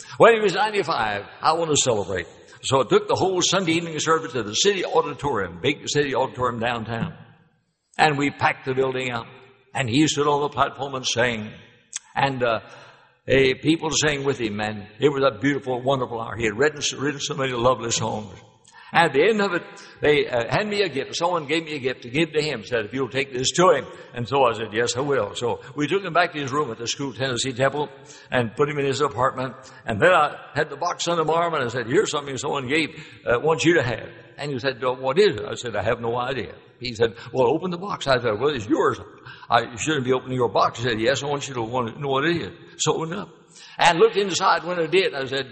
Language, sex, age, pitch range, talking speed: English, male, 60-79, 125-165 Hz, 245 wpm